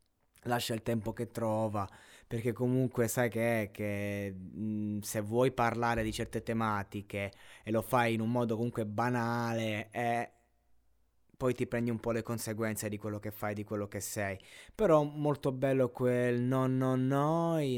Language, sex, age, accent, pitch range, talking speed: Italian, male, 20-39, native, 110-140 Hz, 165 wpm